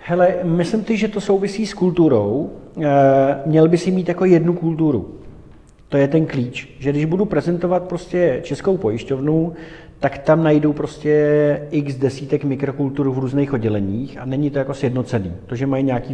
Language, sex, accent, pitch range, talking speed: Czech, male, native, 115-150 Hz, 170 wpm